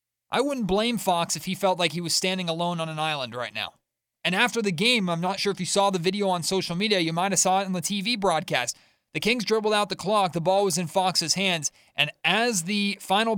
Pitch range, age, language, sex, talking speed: 155-195 Hz, 30-49, English, male, 255 wpm